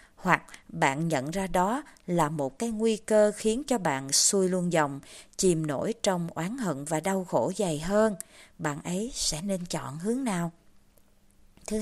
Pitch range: 160-225 Hz